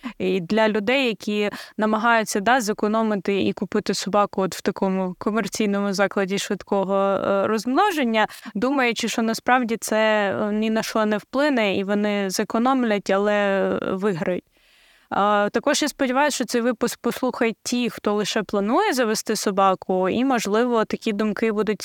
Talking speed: 135 wpm